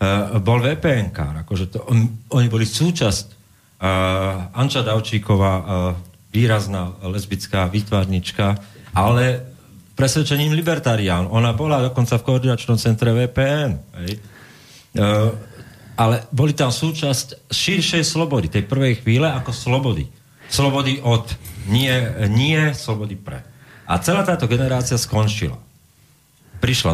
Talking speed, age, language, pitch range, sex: 110 wpm, 40-59, Slovak, 95-130 Hz, male